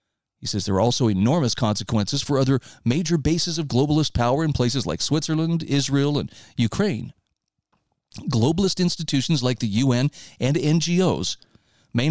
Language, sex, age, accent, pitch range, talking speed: English, male, 40-59, American, 120-160 Hz, 135 wpm